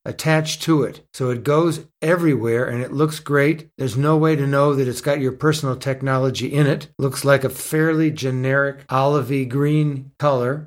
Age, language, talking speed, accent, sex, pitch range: 60-79, English, 180 wpm, American, male, 135-165 Hz